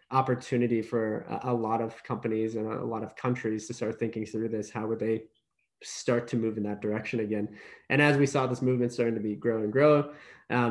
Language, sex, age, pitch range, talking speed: English, male, 20-39, 110-125 Hz, 220 wpm